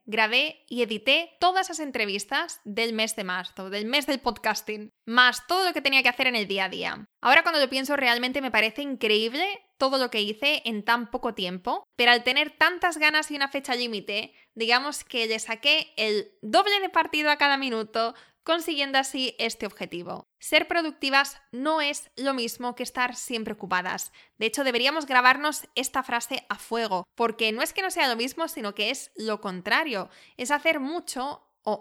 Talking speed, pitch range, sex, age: 190 wpm, 225-300 Hz, female, 20-39